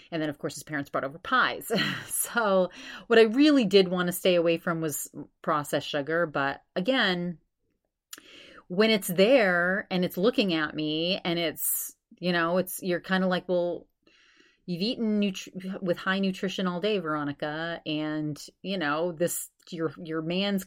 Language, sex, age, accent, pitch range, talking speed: English, female, 30-49, American, 155-195 Hz, 165 wpm